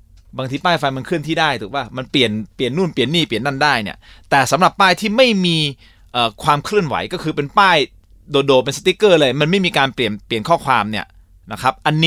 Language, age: Thai, 30-49